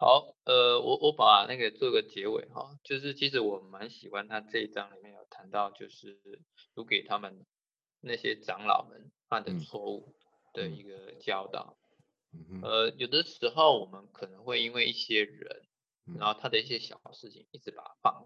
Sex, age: male, 20-39